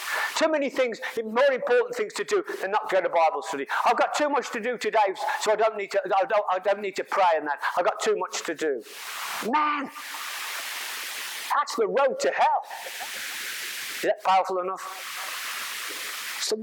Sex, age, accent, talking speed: male, 50-69, British, 190 wpm